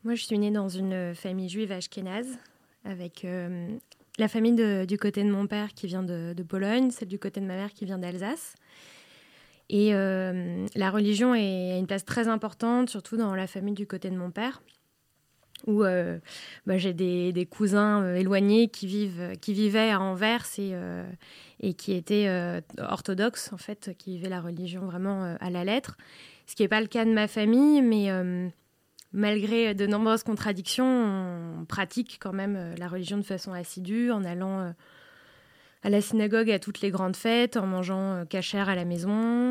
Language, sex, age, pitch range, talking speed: French, female, 20-39, 185-215 Hz, 190 wpm